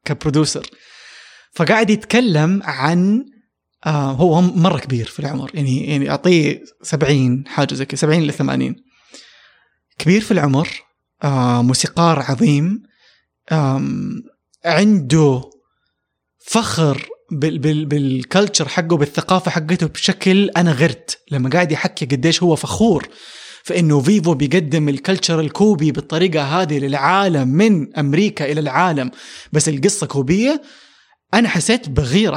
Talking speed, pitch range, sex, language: 105 wpm, 145-195 Hz, male, English